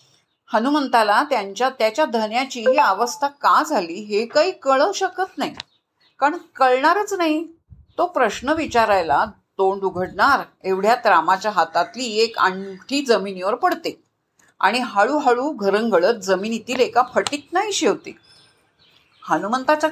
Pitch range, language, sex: 190-275 Hz, Marathi, female